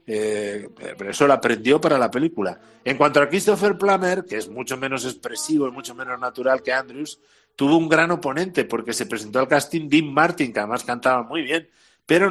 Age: 60-79